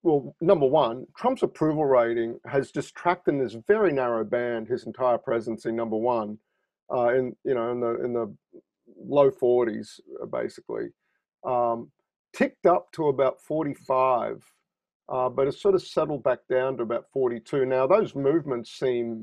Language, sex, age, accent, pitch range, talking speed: English, male, 40-59, Australian, 115-140 Hz, 160 wpm